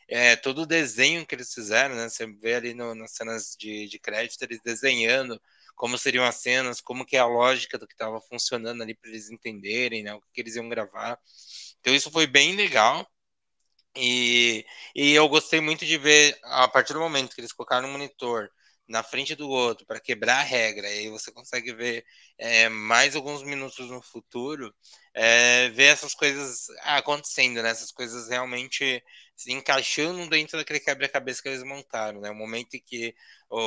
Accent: Brazilian